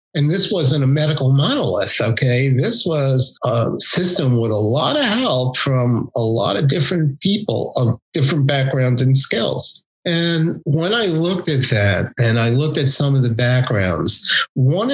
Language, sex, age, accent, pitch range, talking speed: English, male, 50-69, American, 115-140 Hz, 170 wpm